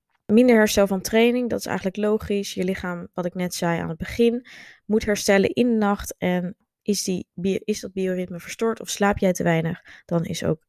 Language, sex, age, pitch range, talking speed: Dutch, female, 20-39, 175-210 Hz, 200 wpm